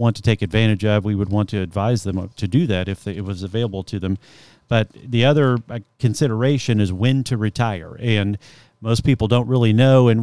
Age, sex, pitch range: 40-59, male, 105-125 Hz